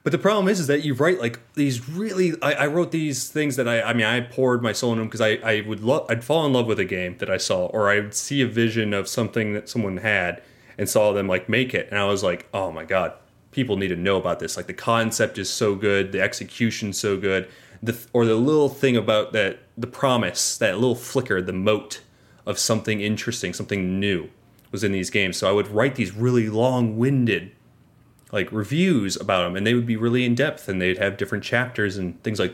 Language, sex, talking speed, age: English, male, 240 wpm, 30-49